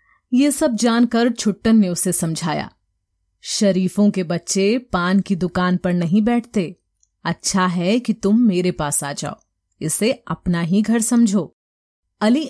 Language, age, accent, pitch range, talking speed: Hindi, 30-49, native, 175-225 Hz, 145 wpm